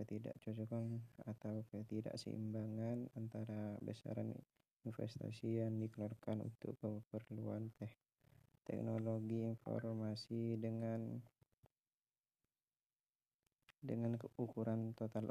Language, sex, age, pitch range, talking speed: Indonesian, male, 20-39, 110-120 Hz, 65 wpm